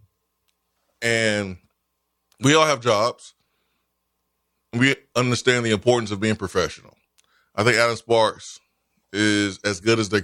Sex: male